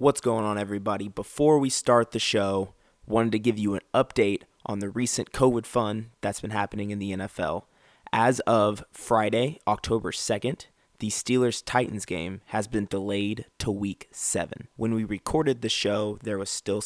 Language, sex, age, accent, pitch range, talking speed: English, male, 20-39, American, 100-120 Hz, 170 wpm